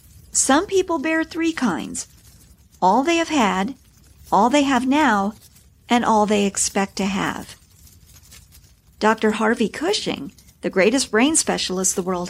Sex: female